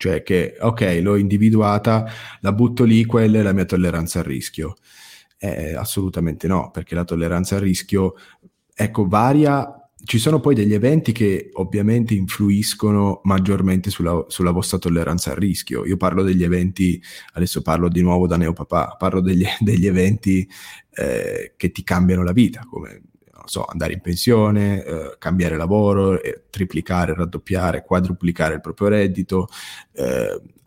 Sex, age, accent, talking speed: male, 30-49, native, 145 wpm